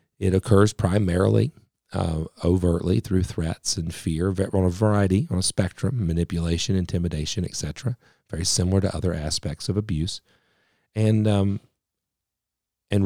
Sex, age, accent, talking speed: male, 40-59, American, 130 wpm